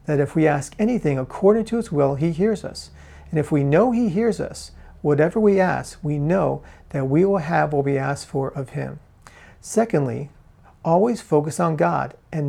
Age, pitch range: 40-59, 135-175 Hz